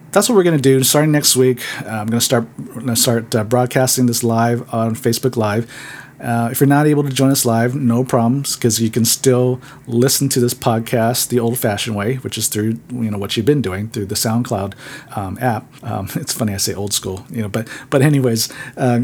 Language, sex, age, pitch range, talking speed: English, male, 40-59, 110-130 Hz, 225 wpm